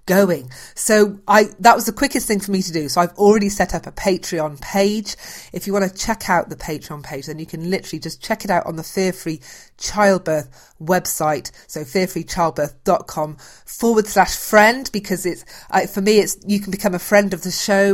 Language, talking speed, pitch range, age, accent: English, 205 wpm, 155-195 Hz, 40-59, British